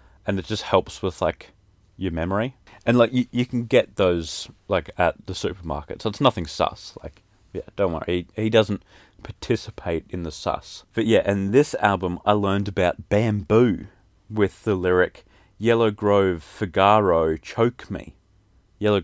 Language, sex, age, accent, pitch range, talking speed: English, male, 30-49, Australian, 90-115 Hz, 165 wpm